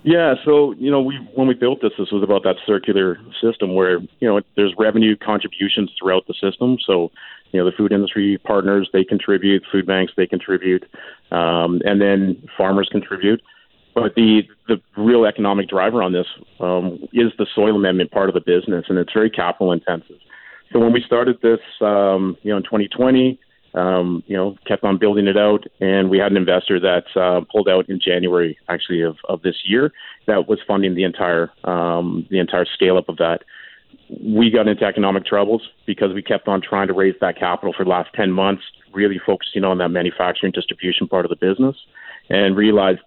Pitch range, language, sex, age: 90-110 Hz, English, male, 40-59